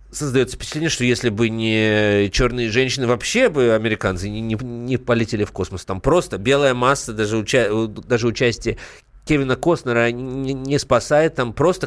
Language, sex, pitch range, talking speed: Russian, male, 110-135 Hz, 145 wpm